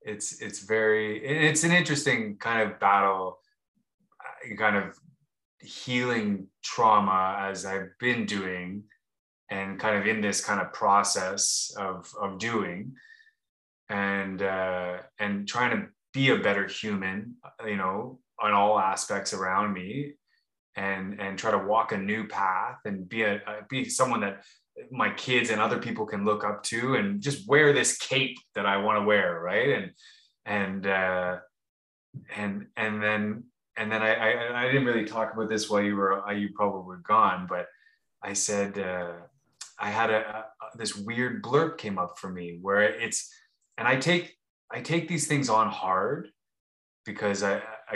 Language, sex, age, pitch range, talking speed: English, male, 20-39, 100-125 Hz, 160 wpm